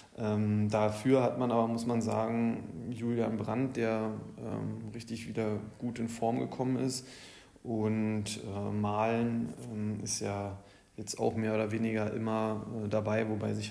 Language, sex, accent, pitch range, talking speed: German, male, German, 110-125 Hz, 150 wpm